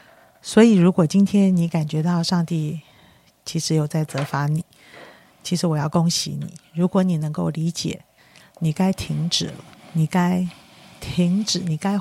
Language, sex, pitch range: Chinese, female, 155-185 Hz